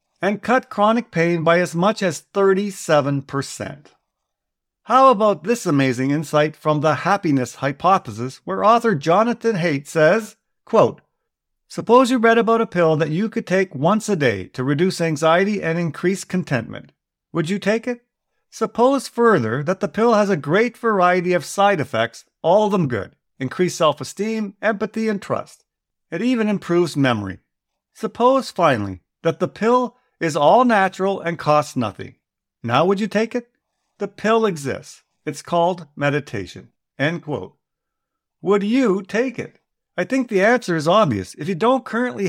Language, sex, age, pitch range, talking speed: English, male, 50-69, 150-215 Hz, 155 wpm